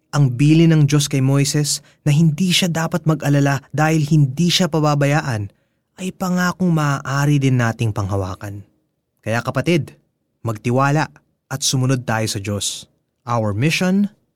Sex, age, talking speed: male, 20-39, 130 wpm